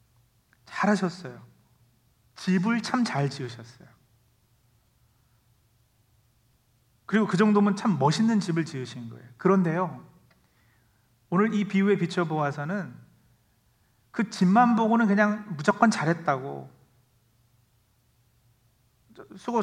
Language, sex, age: Korean, male, 40-59